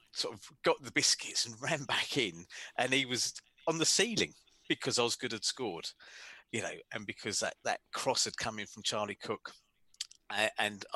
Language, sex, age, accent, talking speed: English, male, 40-59, British, 185 wpm